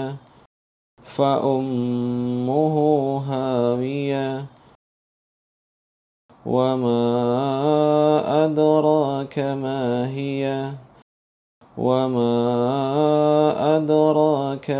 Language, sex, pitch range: Indonesian, male, 125-150 Hz